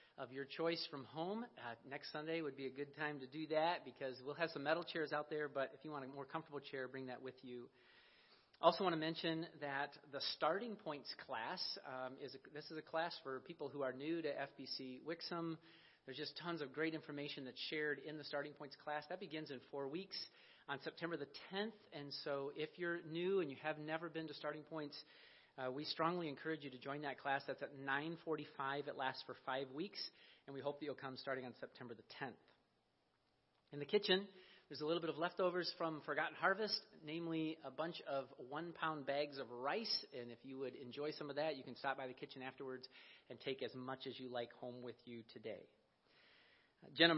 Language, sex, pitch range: English, male, 135-165 Hz